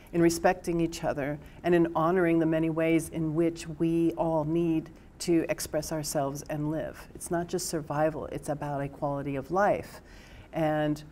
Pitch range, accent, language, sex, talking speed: 150-170 Hz, American, English, female, 165 wpm